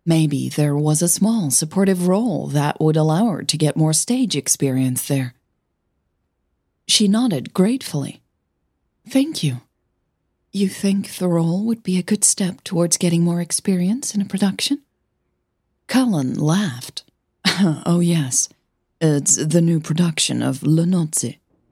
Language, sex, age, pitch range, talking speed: English, female, 40-59, 140-190 Hz, 135 wpm